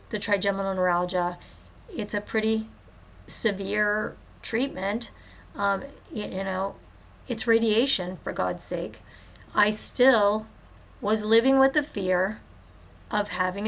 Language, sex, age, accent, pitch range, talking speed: English, female, 40-59, American, 190-230 Hz, 115 wpm